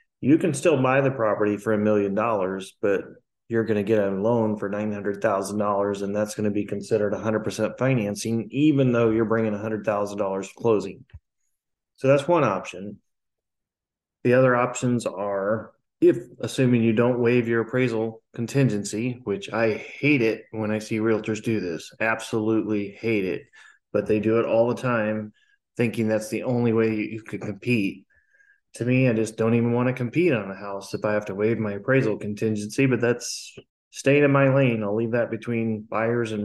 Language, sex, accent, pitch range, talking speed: English, male, American, 105-120 Hz, 180 wpm